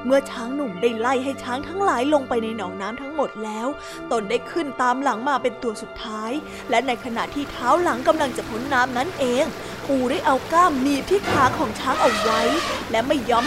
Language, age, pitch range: Thai, 20-39, 240-310 Hz